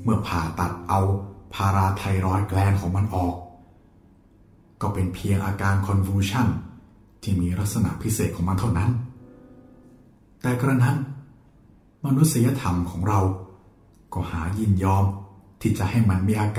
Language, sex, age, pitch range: Thai, male, 60-79, 95-120 Hz